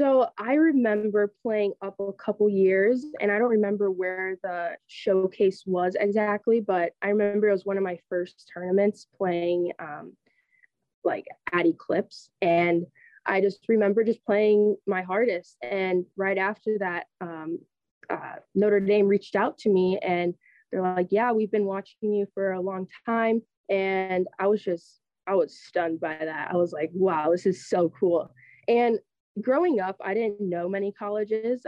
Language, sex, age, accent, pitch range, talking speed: English, female, 20-39, American, 180-210 Hz, 170 wpm